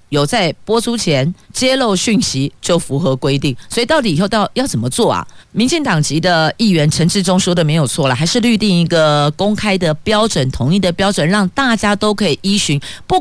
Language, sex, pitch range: Chinese, female, 135-210 Hz